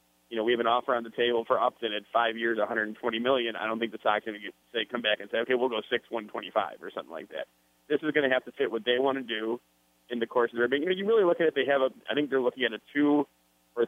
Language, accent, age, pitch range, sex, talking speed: English, American, 30-49, 110-135 Hz, male, 320 wpm